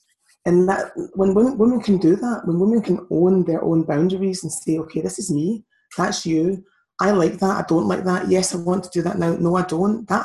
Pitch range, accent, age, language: 175-210 Hz, British, 20-39, English